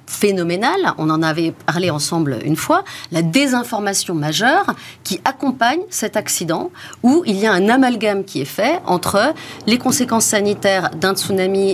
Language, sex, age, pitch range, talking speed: French, female, 40-59, 170-255 Hz, 155 wpm